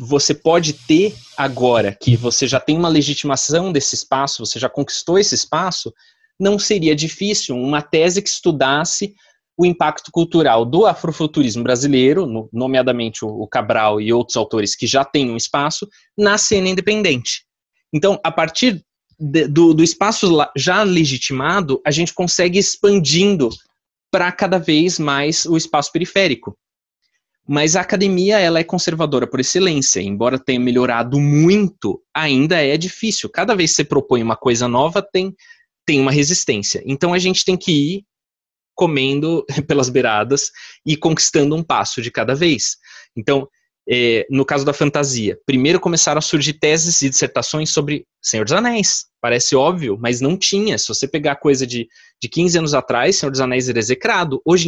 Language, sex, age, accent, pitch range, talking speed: Portuguese, male, 20-39, Brazilian, 130-180 Hz, 160 wpm